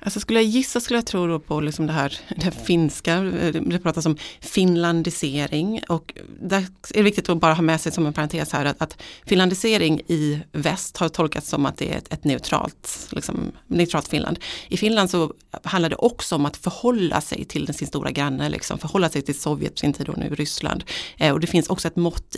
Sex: female